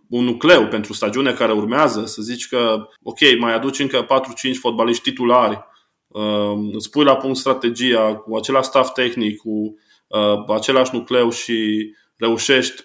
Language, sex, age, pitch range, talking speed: Romanian, male, 20-39, 110-125 Hz, 145 wpm